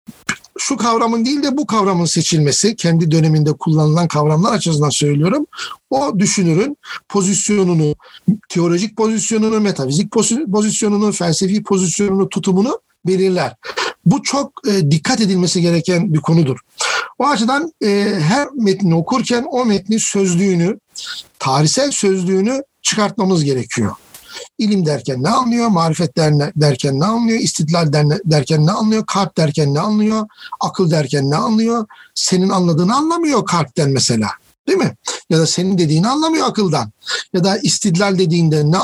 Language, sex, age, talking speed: Turkish, male, 60-79, 125 wpm